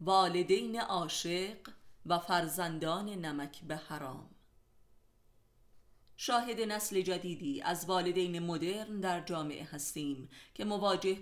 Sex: female